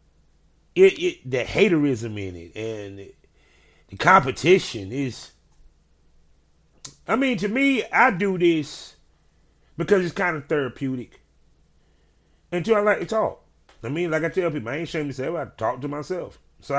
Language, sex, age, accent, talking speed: English, male, 30-49, American, 160 wpm